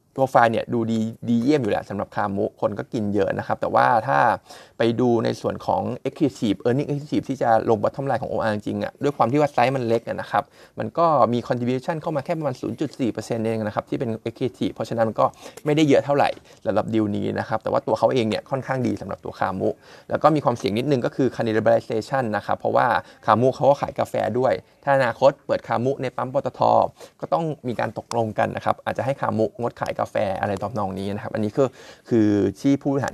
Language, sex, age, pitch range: Thai, male, 20-39, 110-135 Hz